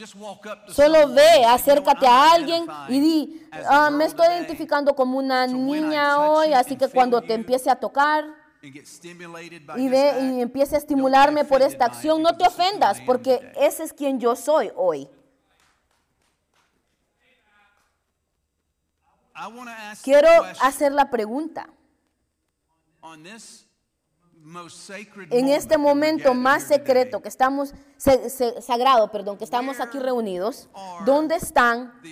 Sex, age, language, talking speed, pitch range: female, 30-49, Spanish, 110 wpm, 225-290 Hz